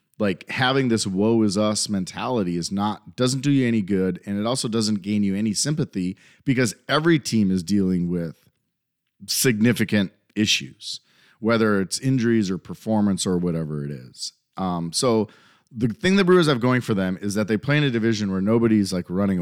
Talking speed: 185 wpm